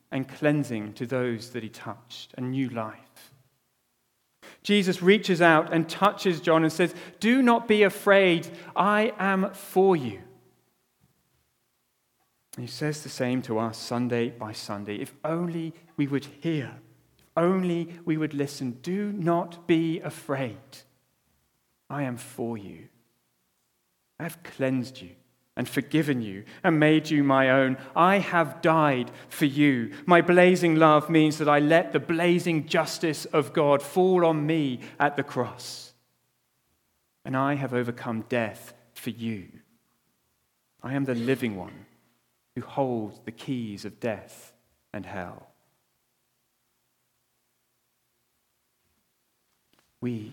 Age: 40-59